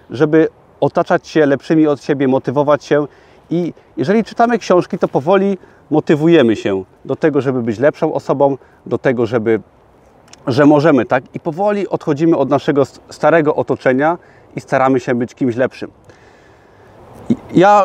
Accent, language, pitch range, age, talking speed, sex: native, Polish, 125-155 Hz, 30-49, 140 wpm, male